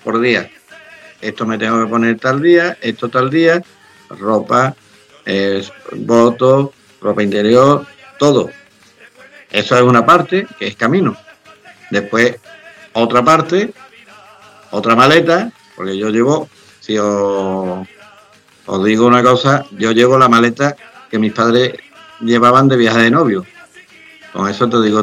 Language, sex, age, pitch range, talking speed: Spanish, male, 60-79, 110-140 Hz, 130 wpm